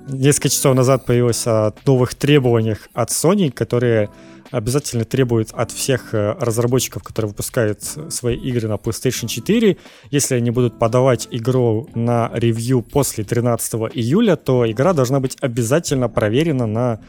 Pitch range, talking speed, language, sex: 115-140 Hz, 135 wpm, Ukrainian, male